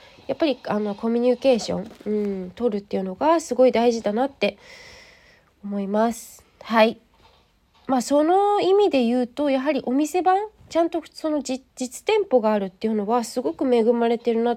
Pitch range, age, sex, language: 205-270 Hz, 20-39, female, Japanese